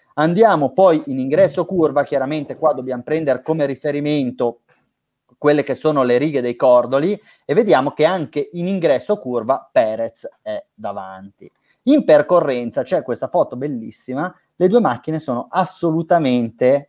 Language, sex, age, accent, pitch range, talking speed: Italian, male, 30-49, native, 125-160 Hz, 140 wpm